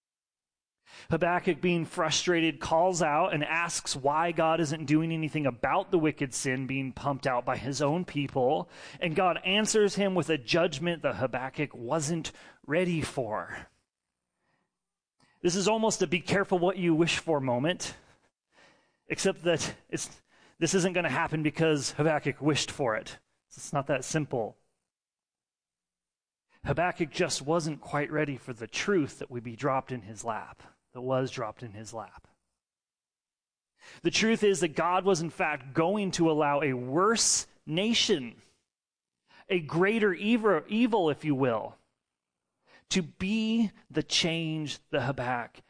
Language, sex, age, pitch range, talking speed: English, male, 30-49, 130-170 Hz, 145 wpm